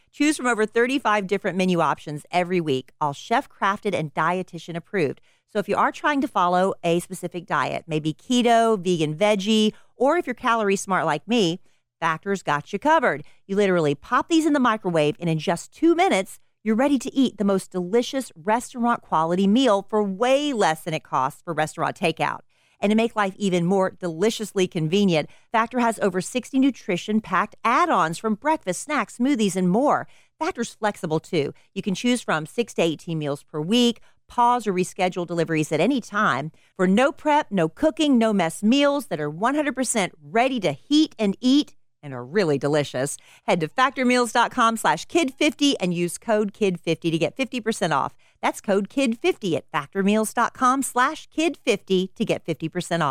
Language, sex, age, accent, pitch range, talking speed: English, female, 40-59, American, 170-245 Hz, 170 wpm